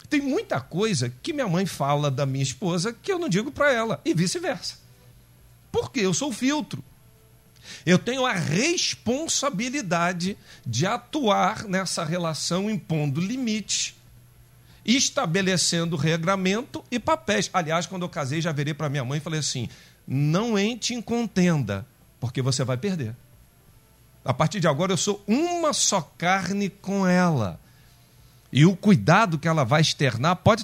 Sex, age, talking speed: male, 50-69, 145 wpm